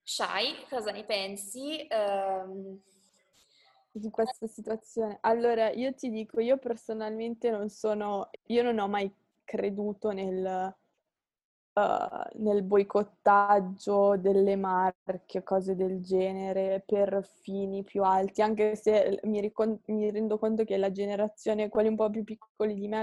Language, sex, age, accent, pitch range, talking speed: Italian, female, 20-39, native, 195-225 Hz, 135 wpm